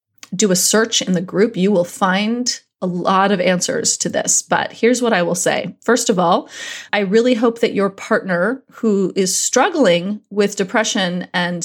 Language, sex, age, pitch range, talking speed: English, female, 30-49, 190-235 Hz, 185 wpm